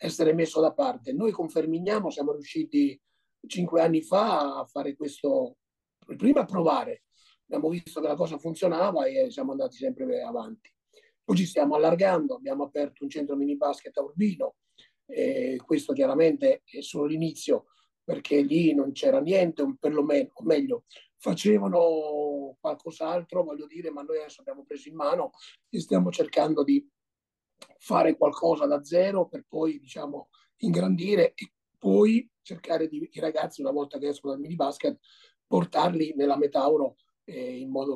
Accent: native